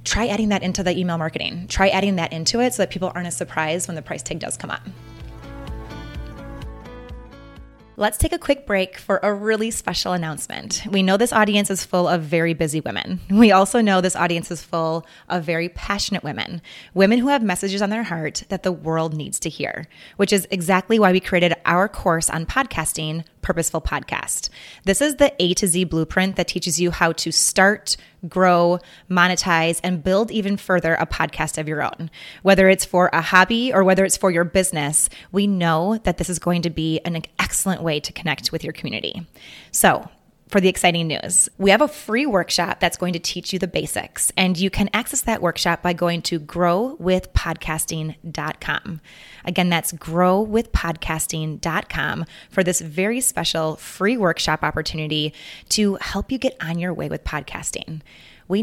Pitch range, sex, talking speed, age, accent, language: 165-195 Hz, female, 185 wpm, 20-39, American, English